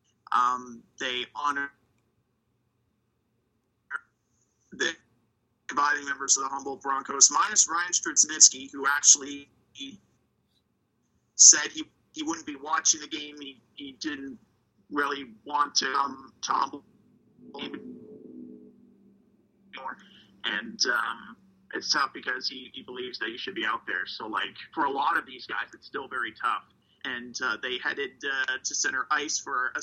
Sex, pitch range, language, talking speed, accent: male, 120-150 Hz, English, 135 wpm, American